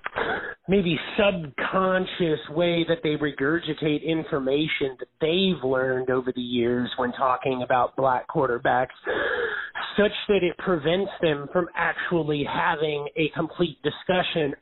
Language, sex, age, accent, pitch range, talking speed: English, male, 30-49, American, 145-190 Hz, 120 wpm